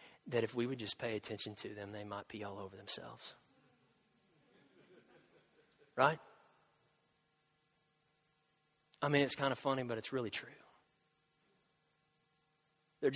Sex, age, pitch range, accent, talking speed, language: male, 40-59, 110-145 Hz, American, 125 wpm, English